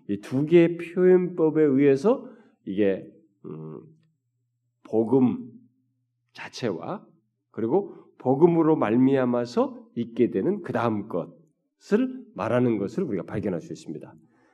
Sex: male